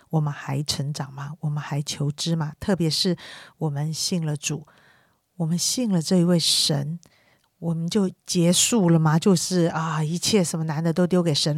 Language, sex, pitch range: Chinese, female, 155-180 Hz